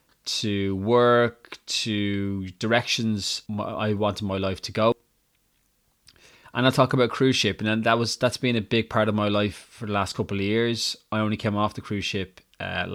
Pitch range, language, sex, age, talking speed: 105-125 Hz, English, male, 20-39, 205 wpm